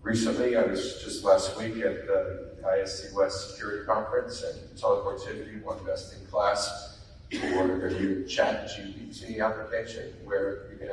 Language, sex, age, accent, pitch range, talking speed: English, male, 40-59, American, 95-110 Hz, 150 wpm